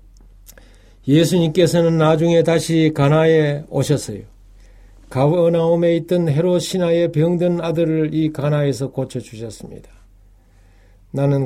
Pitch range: 100-160 Hz